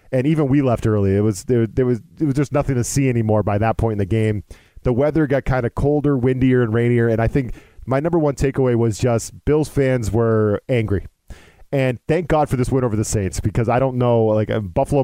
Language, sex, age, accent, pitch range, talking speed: English, male, 40-59, American, 110-140 Hz, 240 wpm